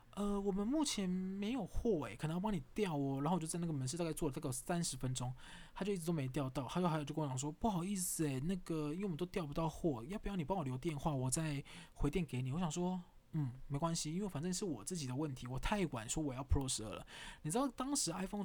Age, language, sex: 20-39, Chinese, male